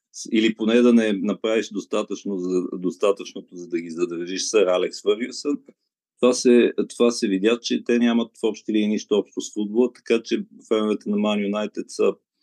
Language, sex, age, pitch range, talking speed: Bulgarian, male, 50-69, 100-135 Hz, 170 wpm